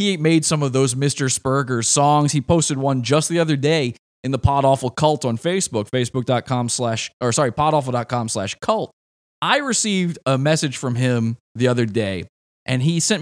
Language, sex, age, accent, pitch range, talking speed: English, male, 20-39, American, 125-165 Hz, 185 wpm